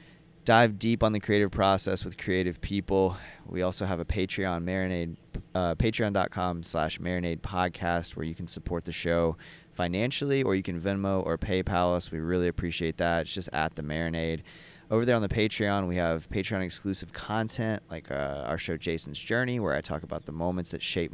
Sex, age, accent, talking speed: male, 30-49, American, 185 wpm